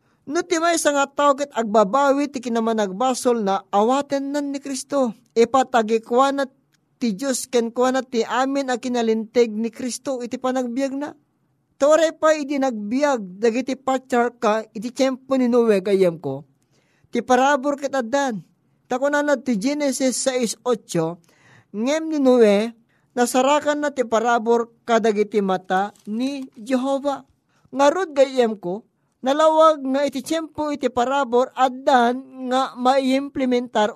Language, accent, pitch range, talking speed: Filipino, native, 220-275 Hz, 125 wpm